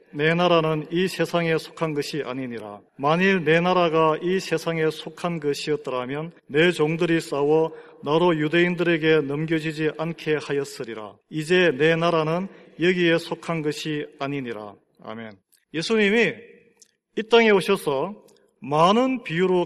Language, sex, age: Korean, male, 40-59